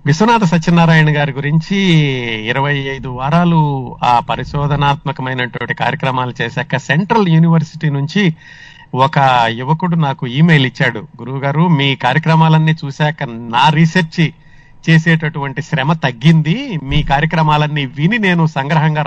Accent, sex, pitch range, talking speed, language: native, male, 135-160 Hz, 105 wpm, Telugu